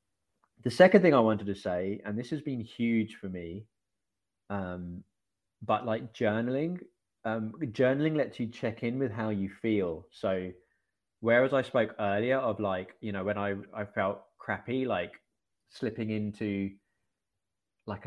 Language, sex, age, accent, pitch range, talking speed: English, male, 20-39, British, 100-125 Hz, 155 wpm